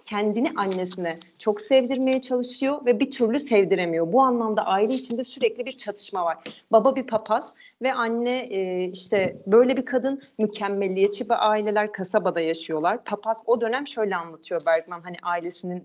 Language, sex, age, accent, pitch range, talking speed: Turkish, female, 40-59, native, 180-250 Hz, 150 wpm